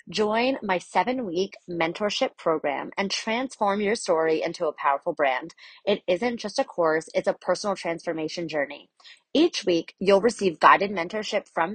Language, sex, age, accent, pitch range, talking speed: English, female, 30-49, American, 170-210 Hz, 155 wpm